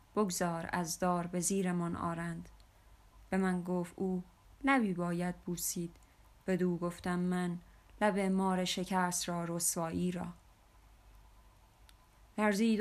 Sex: female